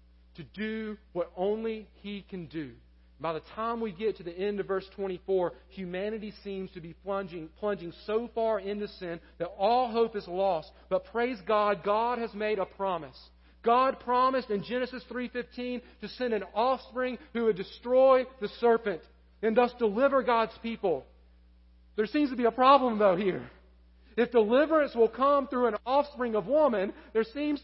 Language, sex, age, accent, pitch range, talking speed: English, male, 40-59, American, 190-250 Hz, 170 wpm